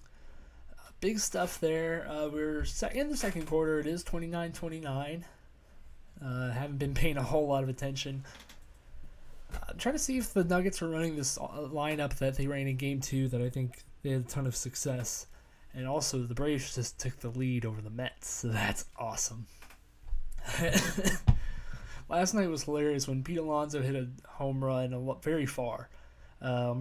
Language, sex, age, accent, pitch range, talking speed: English, male, 20-39, American, 120-150 Hz, 165 wpm